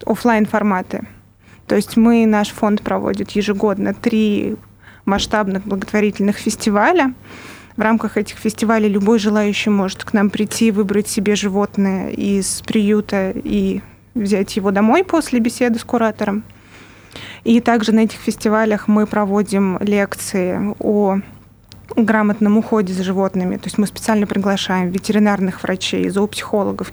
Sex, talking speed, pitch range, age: female, 125 wpm, 200-225 Hz, 20-39